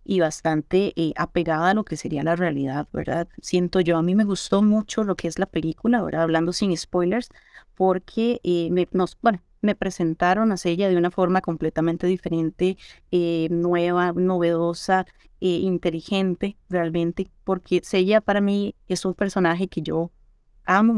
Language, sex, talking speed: Spanish, female, 165 wpm